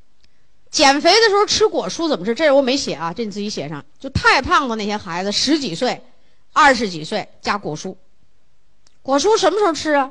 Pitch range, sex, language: 200-315 Hz, female, Chinese